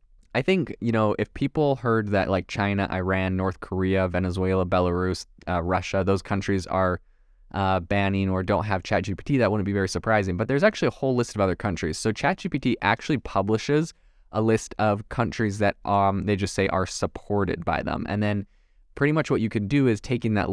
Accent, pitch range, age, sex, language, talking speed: American, 95-110 Hz, 20-39, male, English, 200 wpm